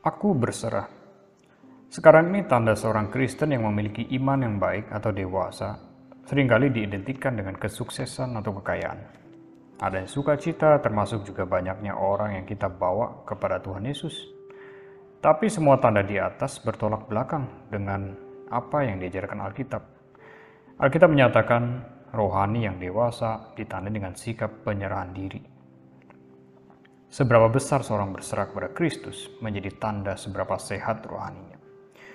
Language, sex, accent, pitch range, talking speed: Indonesian, male, native, 100-135 Hz, 125 wpm